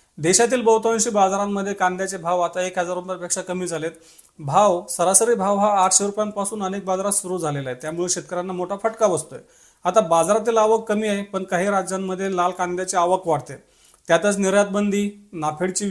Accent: native